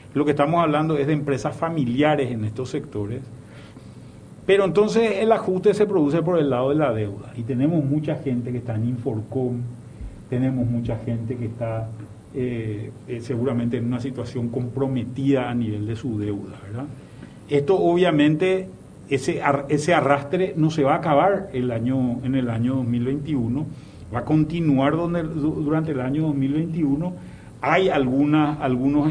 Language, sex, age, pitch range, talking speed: Spanish, male, 40-59, 125-150 Hz, 145 wpm